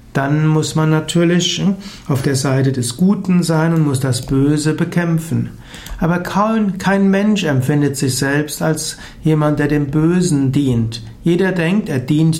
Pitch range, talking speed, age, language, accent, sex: 140-170 Hz, 150 wpm, 60-79, German, German, male